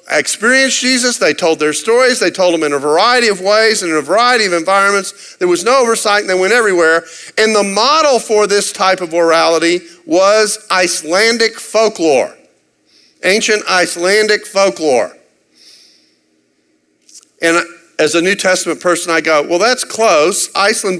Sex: male